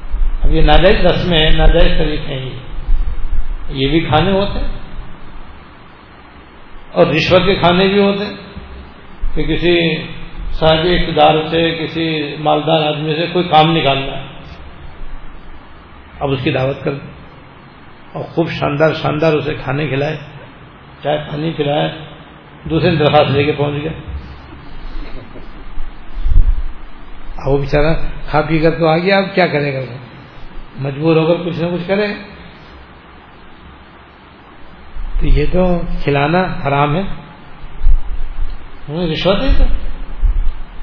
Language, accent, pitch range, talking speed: English, Indian, 130-170 Hz, 105 wpm